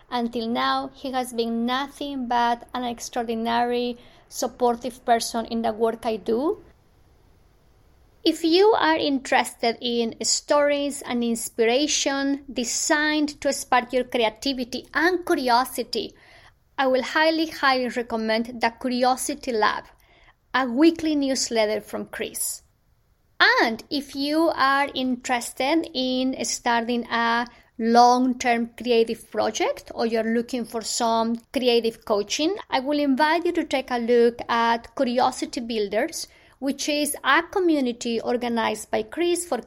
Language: English